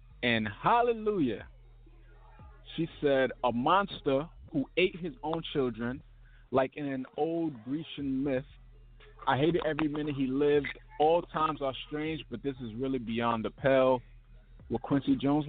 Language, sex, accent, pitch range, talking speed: English, male, American, 115-140 Hz, 145 wpm